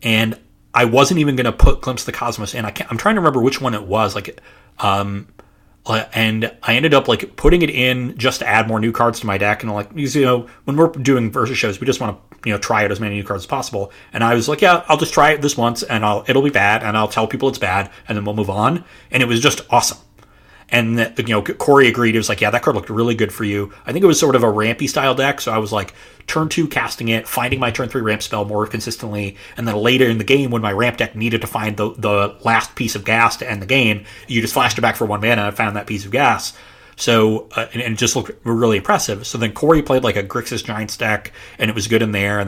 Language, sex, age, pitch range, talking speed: English, male, 30-49, 105-125 Hz, 285 wpm